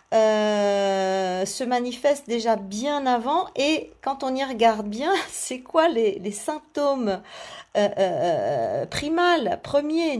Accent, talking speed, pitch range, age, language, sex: French, 125 wpm, 215-275 Hz, 50-69, French, female